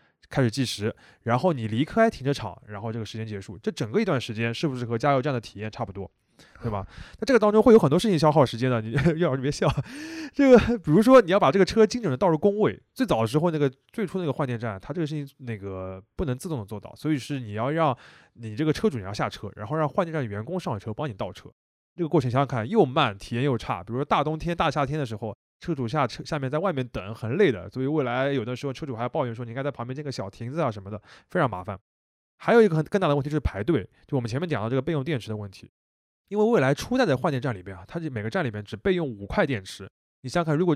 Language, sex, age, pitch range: Chinese, male, 20-39, 115-170 Hz